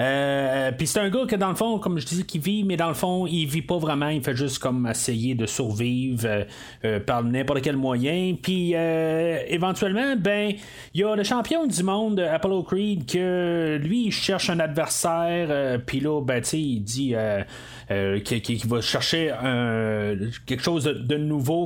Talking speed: 210 wpm